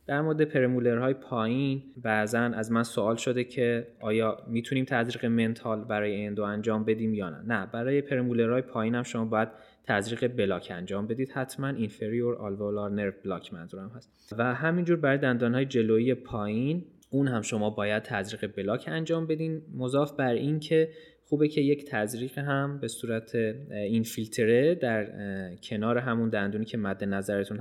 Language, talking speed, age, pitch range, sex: Persian, 160 wpm, 20-39, 105-130 Hz, male